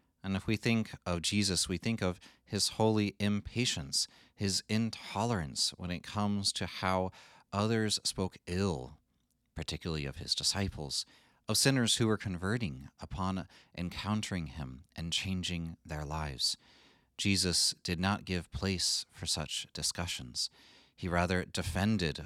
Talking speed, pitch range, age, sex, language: 130 wpm, 80-100 Hz, 30-49, male, English